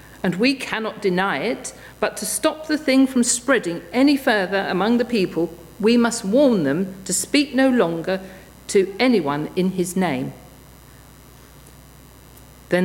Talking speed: 145 wpm